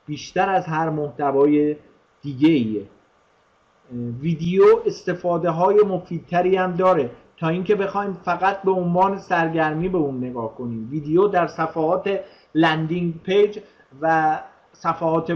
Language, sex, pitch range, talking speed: Persian, male, 155-195 Hz, 110 wpm